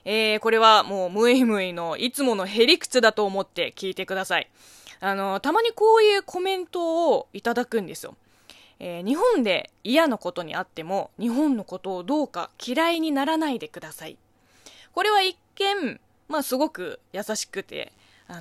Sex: female